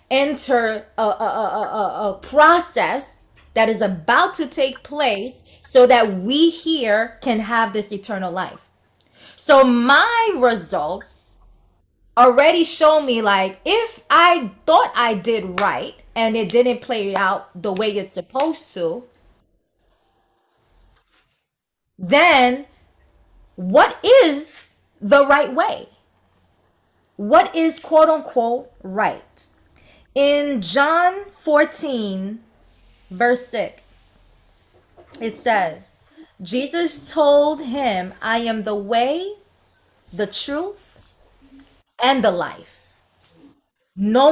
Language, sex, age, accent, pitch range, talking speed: English, female, 20-39, American, 200-290 Hz, 100 wpm